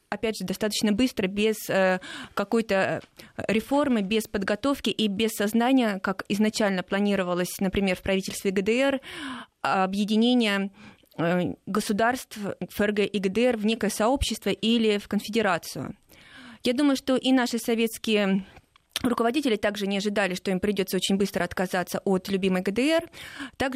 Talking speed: 125 wpm